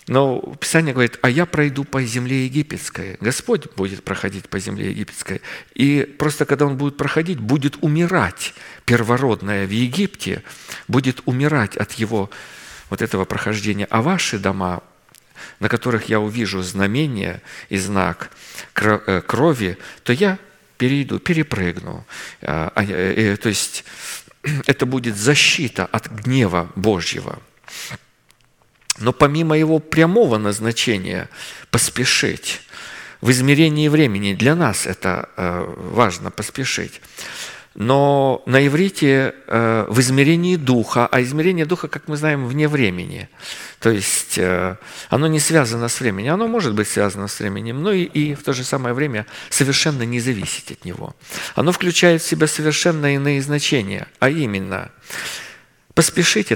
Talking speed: 125 wpm